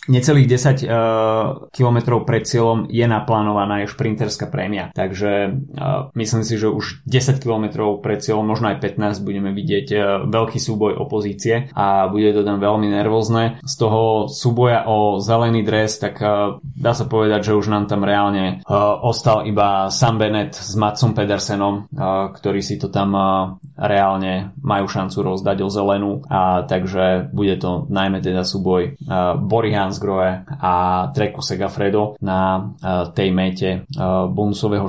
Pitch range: 95-115 Hz